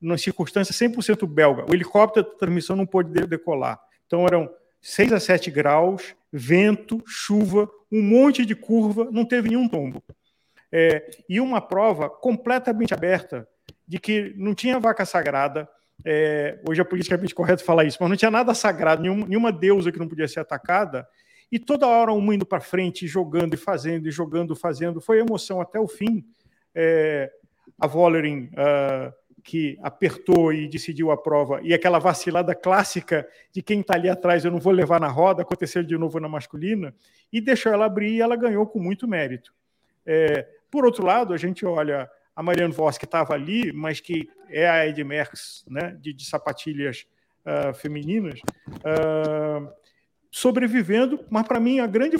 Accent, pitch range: Brazilian, 160-225 Hz